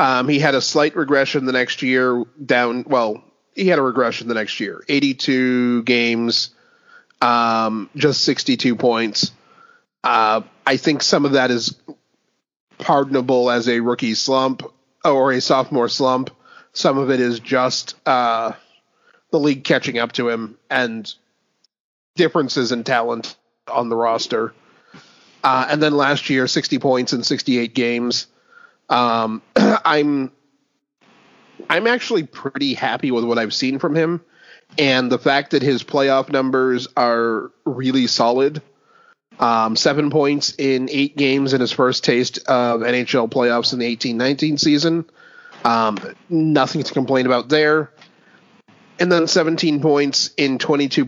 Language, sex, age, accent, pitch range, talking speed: English, male, 30-49, American, 120-150 Hz, 140 wpm